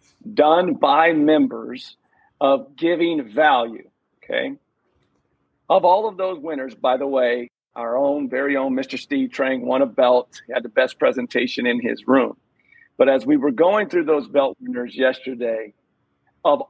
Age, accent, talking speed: 50-69, American, 155 wpm